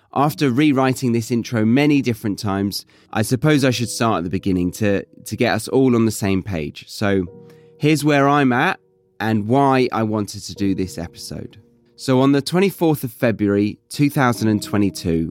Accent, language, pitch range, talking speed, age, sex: British, English, 100-135 Hz, 175 wpm, 30-49, male